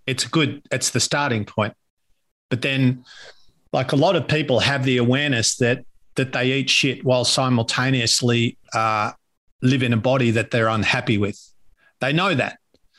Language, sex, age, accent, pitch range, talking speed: English, male, 50-69, Australian, 120-145 Hz, 160 wpm